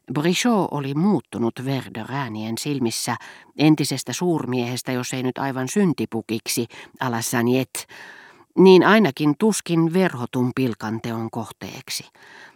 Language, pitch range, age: Finnish, 120-155 Hz, 50-69